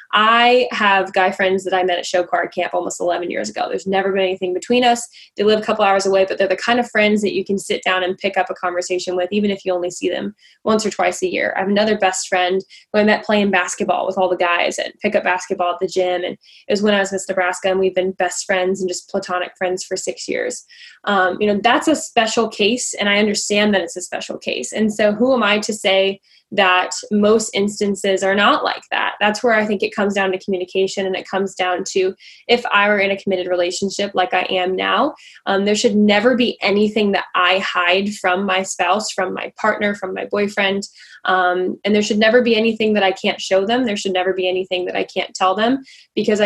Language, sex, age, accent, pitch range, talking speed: English, female, 10-29, American, 185-215 Hz, 245 wpm